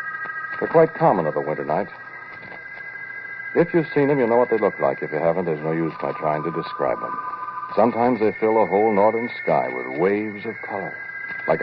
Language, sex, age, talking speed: English, male, 60-79, 205 wpm